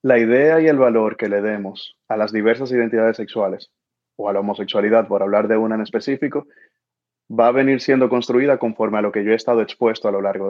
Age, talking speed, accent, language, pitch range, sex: 30-49, 225 wpm, Venezuelan, Spanish, 110-130 Hz, male